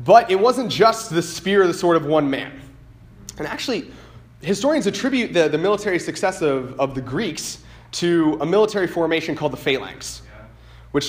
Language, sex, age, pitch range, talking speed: English, male, 30-49, 135-185 Hz, 175 wpm